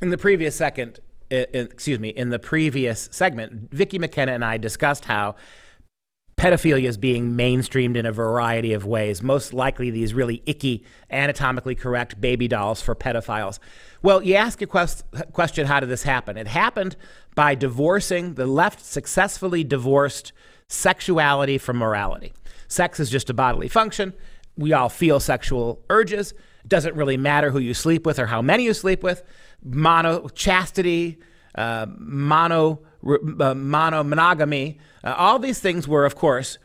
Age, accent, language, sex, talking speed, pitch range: 40-59, American, English, male, 155 wpm, 130-180 Hz